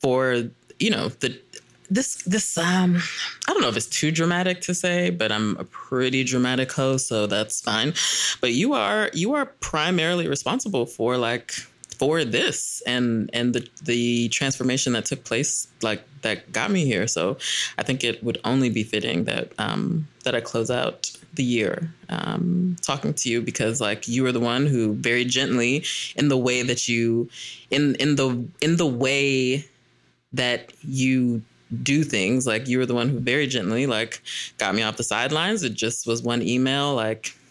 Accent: American